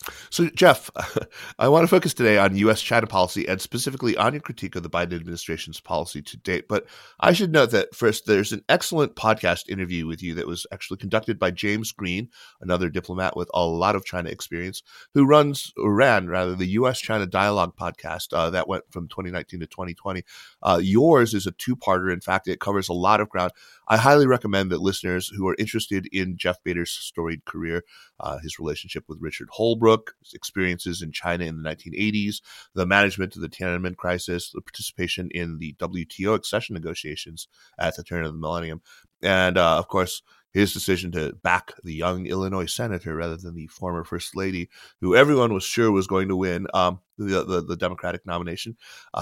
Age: 30-49